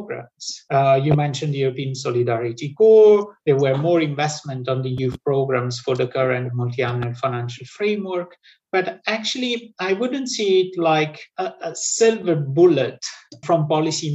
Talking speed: 145 wpm